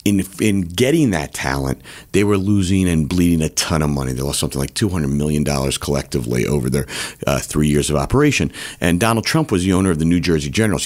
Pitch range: 75-105 Hz